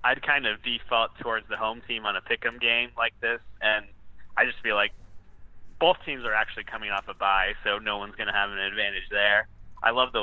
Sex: male